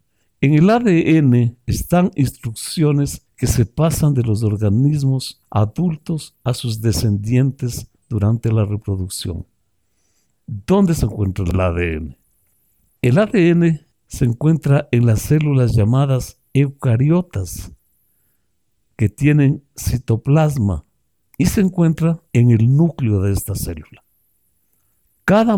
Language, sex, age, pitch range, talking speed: Spanish, male, 60-79, 105-145 Hz, 105 wpm